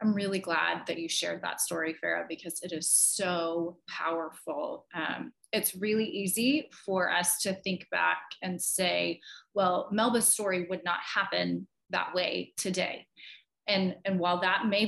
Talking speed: 155 wpm